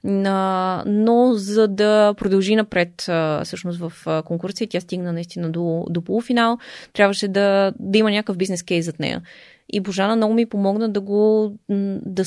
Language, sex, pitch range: Bulgarian, female, 170-205 Hz